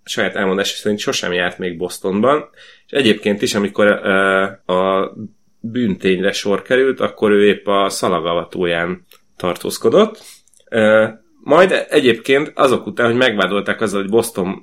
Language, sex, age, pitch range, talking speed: Hungarian, male, 30-49, 100-115 Hz, 130 wpm